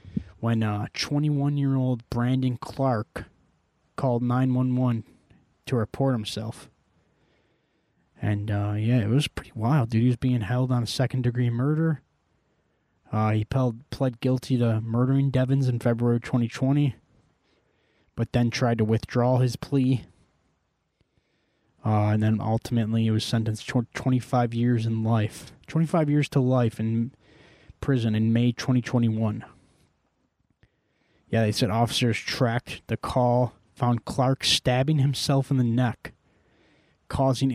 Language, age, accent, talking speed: English, 20-39, American, 130 wpm